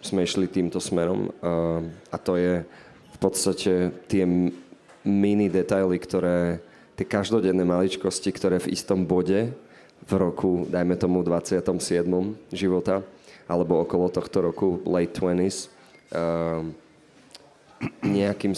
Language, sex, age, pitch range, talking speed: Slovak, male, 30-49, 85-95 Hz, 115 wpm